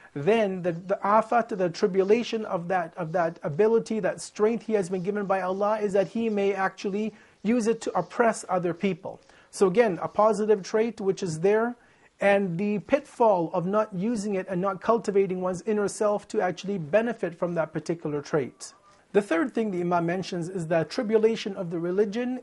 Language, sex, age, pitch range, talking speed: English, male, 40-59, 175-210 Hz, 185 wpm